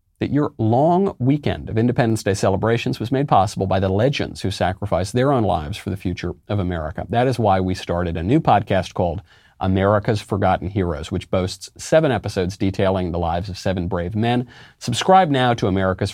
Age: 40-59